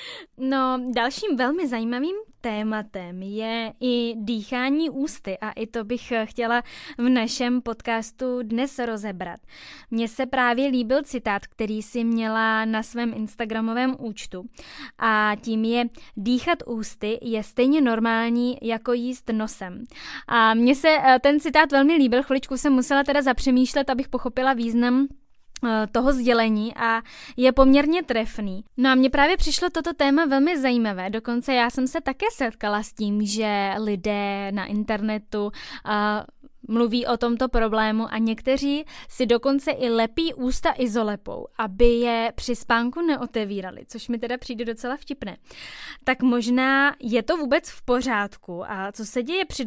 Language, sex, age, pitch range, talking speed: Czech, female, 10-29, 220-265 Hz, 145 wpm